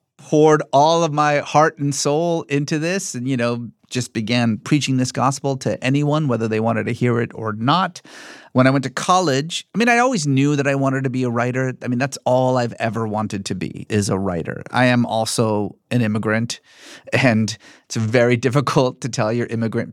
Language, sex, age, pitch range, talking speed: English, male, 30-49, 115-160 Hz, 210 wpm